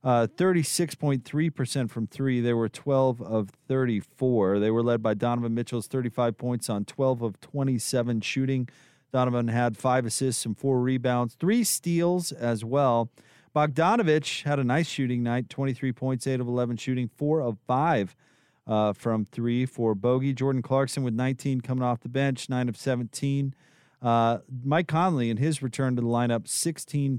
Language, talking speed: English, 160 wpm